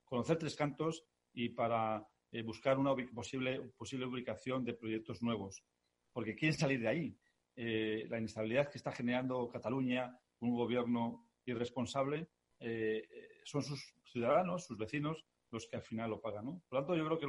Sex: male